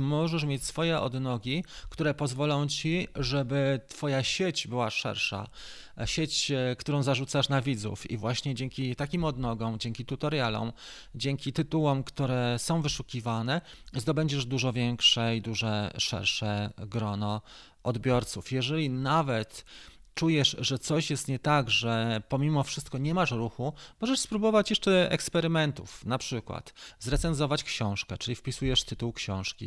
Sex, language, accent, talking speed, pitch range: male, Polish, native, 125 wpm, 110-145 Hz